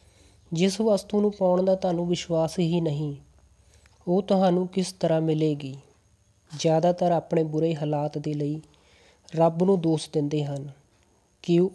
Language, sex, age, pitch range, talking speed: Punjabi, female, 20-39, 155-180 Hz, 135 wpm